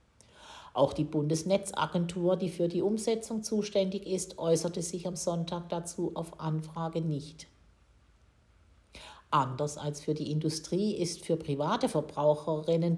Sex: female